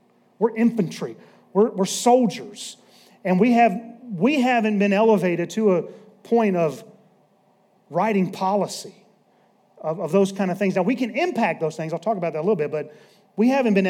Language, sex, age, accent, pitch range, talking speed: English, male, 40-59, American, 205-285 Hz, 175 wpm